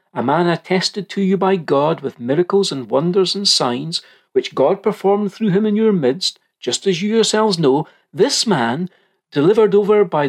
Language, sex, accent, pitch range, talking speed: English, male, British, 145-200 Hz, 180 wpm